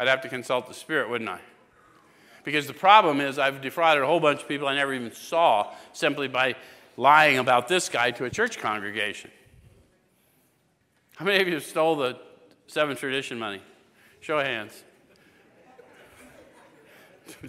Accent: American